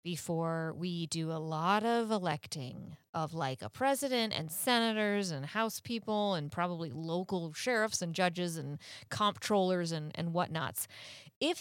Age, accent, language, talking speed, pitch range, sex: 30-49, American, English, 145 wpm, 165-220 Hz, female